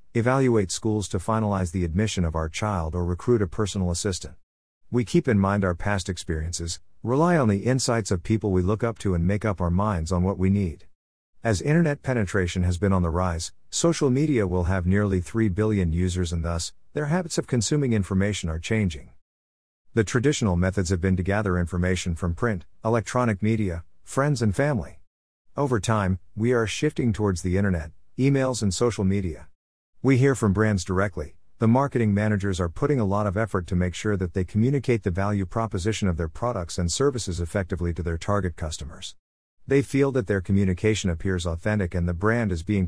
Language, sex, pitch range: English, male, 90-110 Hz